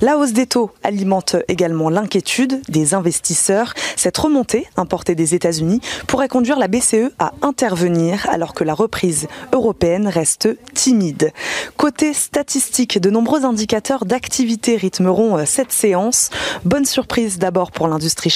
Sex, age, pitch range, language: female, 20-39, 170-240 Hz, French